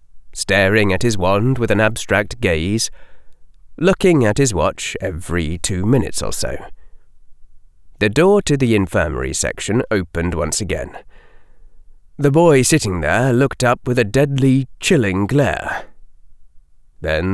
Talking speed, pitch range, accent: 130 wpm, 80-120 Hz, British